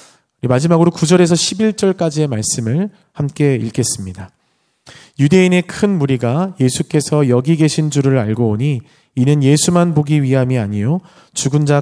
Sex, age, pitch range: male, 40-59, 125-175 Hz